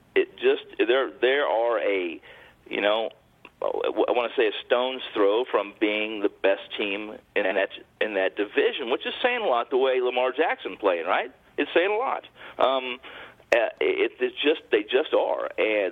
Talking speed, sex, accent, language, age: 180 wpm, male, American, English, 50-69